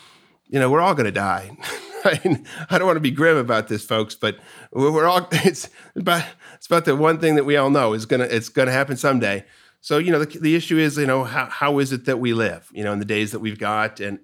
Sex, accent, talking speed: male, American, 265 wpm